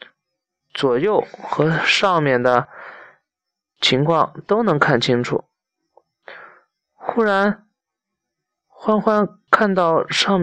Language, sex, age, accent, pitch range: Chinese, male, 20-39, native, 135-185 Hz